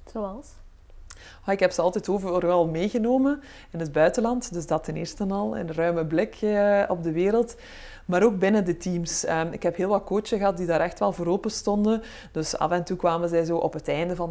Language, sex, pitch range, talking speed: Dutch, female, 165-195 Hz, 215 wpm